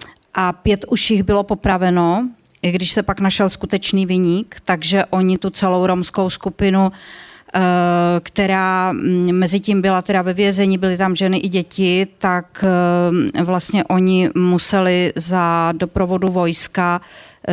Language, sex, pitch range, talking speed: Slovak, female, 185-210 Hz, 130 wpm